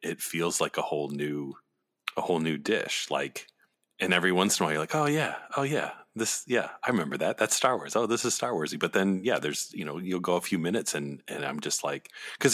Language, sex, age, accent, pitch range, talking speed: English, male, 30-49, American, 85-100 Hz, 255 wpm